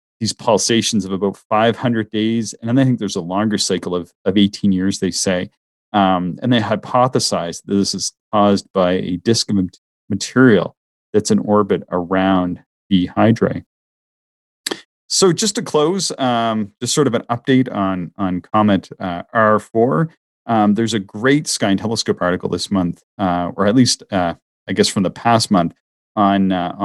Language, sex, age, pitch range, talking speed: English, male, 40-59, 90-110 Hz, 170 wpm